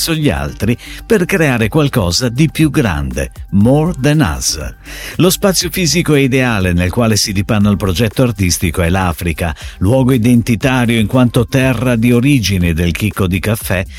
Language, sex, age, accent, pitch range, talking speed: Italian, male, 50-69, native, 95-145 Hz, 155 wpm